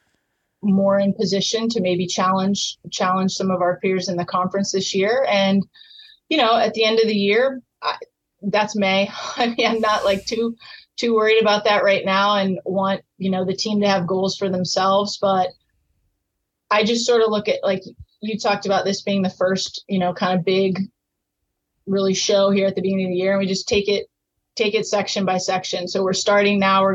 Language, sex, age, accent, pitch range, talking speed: English, female, 30-49, American, 190-205 Hz, 210 wpm